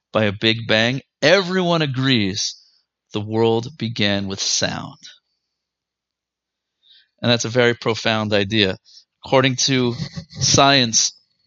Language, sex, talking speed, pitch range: English, male, 105 wpm, 110-135 Hz